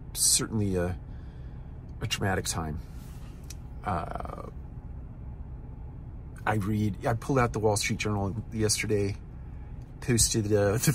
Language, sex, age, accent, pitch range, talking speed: English, male, 40-59, American, 100-125 Hz, 105 wpm